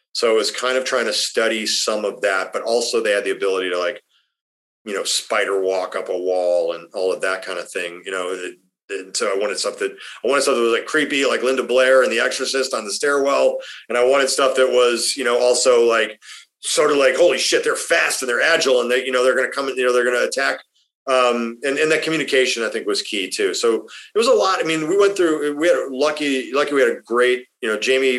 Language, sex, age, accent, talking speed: English, male, 40-59, American, 260 wpm